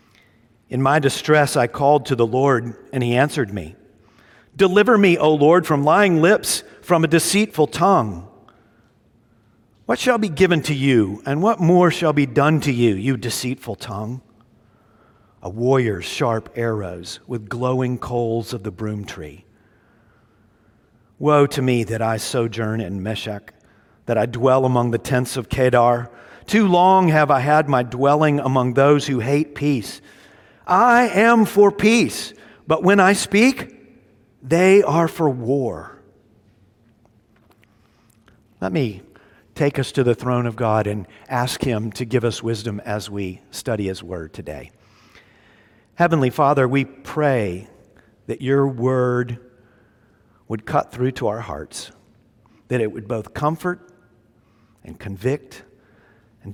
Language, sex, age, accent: English, male, 40-59, American